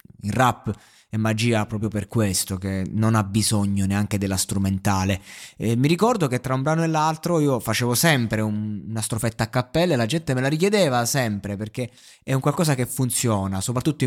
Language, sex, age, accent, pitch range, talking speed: Italian, male, 20-39, native, 110-160 Hz, 190 wpm